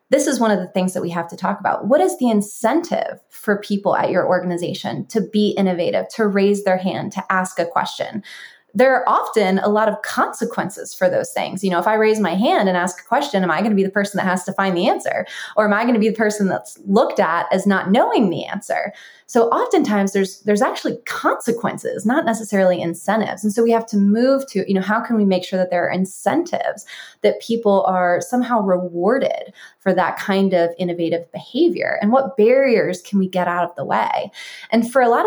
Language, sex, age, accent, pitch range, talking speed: English, female, 20-39, American, 180-220 Hz, 230 wpm